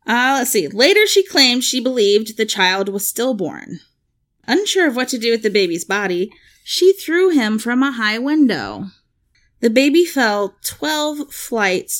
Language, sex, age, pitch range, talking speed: English, female, 20-39, 195-275 Hz, 165 wpm